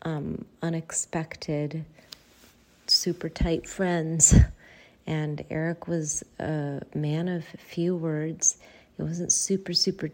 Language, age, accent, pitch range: English, 40-59, American, 145-165 Hz